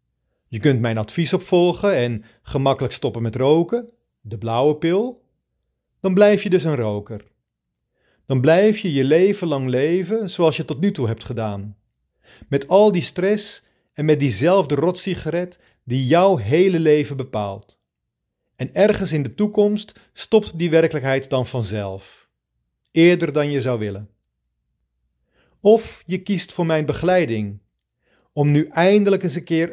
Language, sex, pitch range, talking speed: English, male, 110-180 Hz, 145 wpm